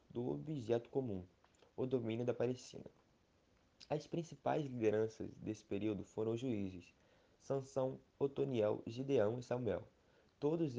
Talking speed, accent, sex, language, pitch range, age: 115 wpm, Brazilian, male, Portuguese, 115-135 Hz, 20-39